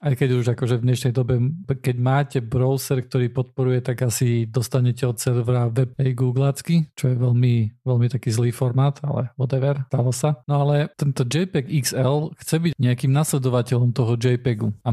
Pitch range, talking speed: 125-145 Hz, 170 wpm